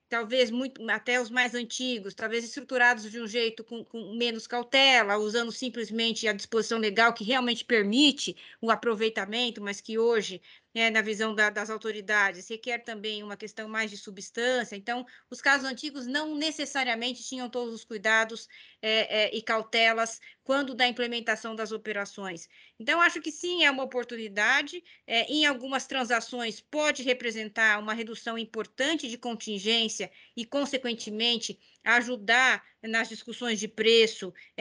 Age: 20-39